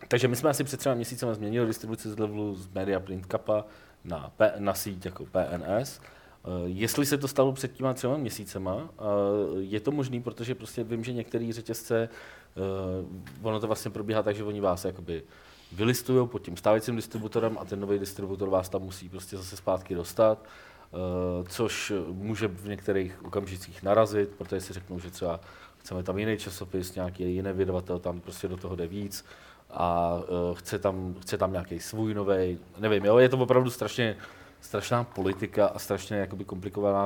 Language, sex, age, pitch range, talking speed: Czech, male, 30-49, 95-120 Hz, 170 wpm